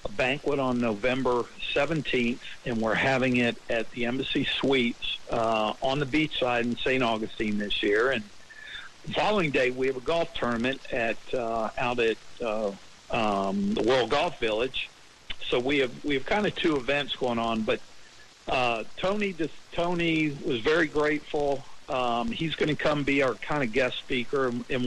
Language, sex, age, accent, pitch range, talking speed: English, male, 60-79, American, 120-145 Hz, 175 wpm